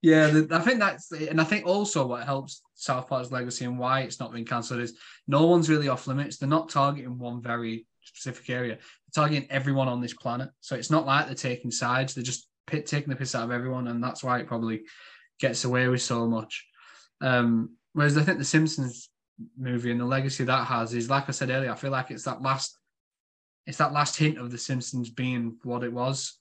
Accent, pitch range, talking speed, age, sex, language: British, 120-140 Hz, 225 wpm, 10-29, male, English